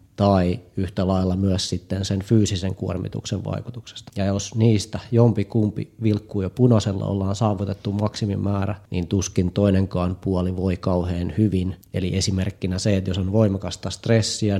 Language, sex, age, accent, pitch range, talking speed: Finnish, male, 30-49, native, 95-110 Hz, 140 wpm